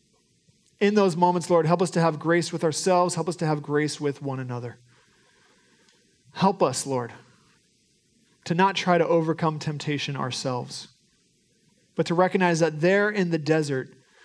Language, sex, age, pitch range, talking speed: English, male, 40-59, 135-175 Hz, 155 wpm